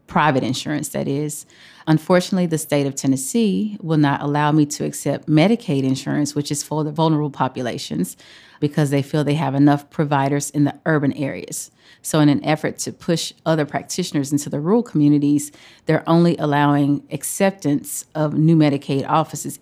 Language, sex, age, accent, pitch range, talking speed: English, female, 30-49, American, 145-160 Hz, 165 wpm